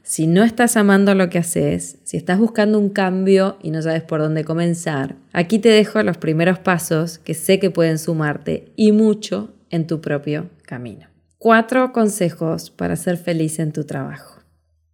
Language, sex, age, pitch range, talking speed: Spanish, female, 20-39, 160-215 Hz, 175 wpm